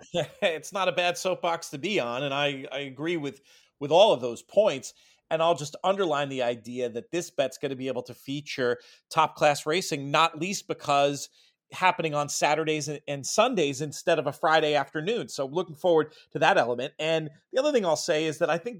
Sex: male